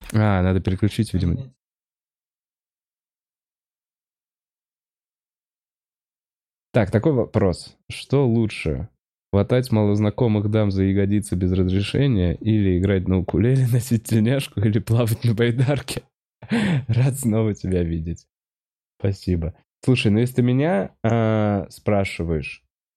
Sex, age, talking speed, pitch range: male, 20-39, 100 wpm, 95-120 Hz